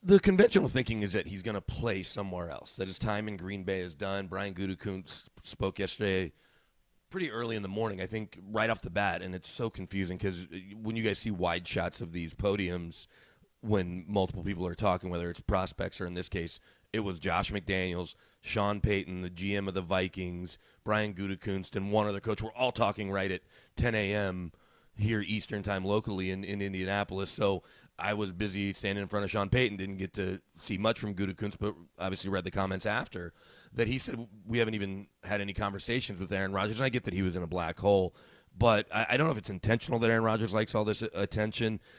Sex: male